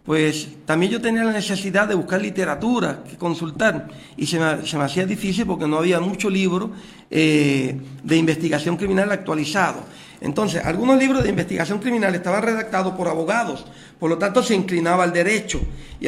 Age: 50-69